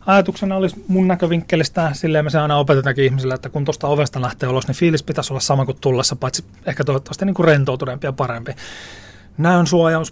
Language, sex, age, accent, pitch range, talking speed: Finnish, male, 30-49, native, 130-160 Hz, 195 wpm